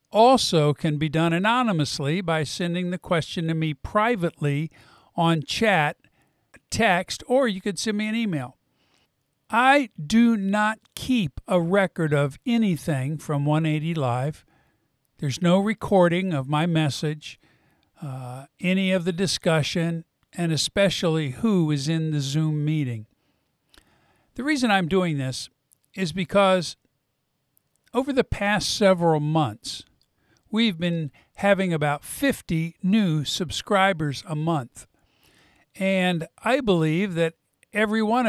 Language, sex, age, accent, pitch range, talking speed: English, male, 50-69, American, 150-195 Hz, 125 wpm